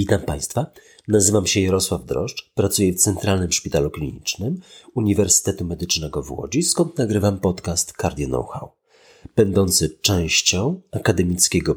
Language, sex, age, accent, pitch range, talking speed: Polish, male, 40-59, native, 90-115 Hz, 120 wpm